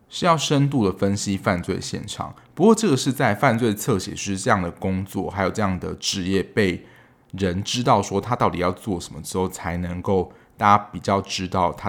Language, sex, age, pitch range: Chinese, male, 20-39, 95-115 Hz